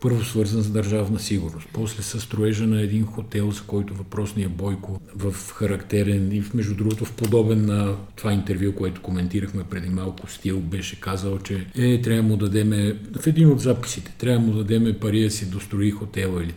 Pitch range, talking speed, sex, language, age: 90-110 Hz, 190 wpm, male, Bulgarian, 50-69